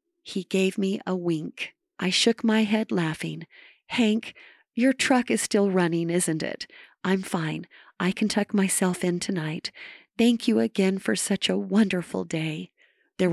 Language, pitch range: English, 175-220 Hz